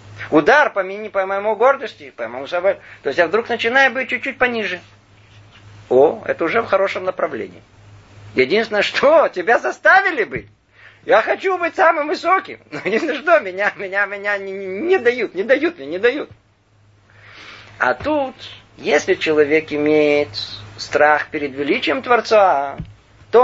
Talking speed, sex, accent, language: 150 wpm, male, native, Russian